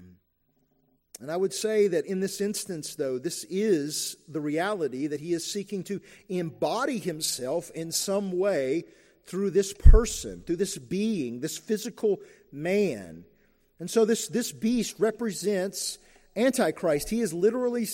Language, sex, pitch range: English, male, 150-200 Hz